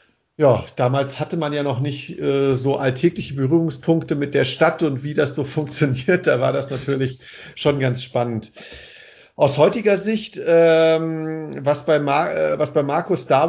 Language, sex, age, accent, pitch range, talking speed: German, male, 50-69, German, 135-165 Hz, 150 wpm